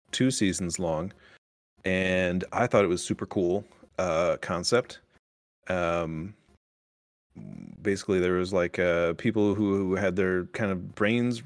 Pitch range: 90-110 Hz